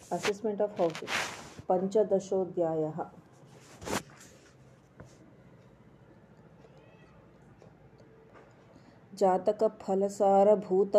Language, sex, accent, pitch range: Kannada, female, native, 175-205 Hz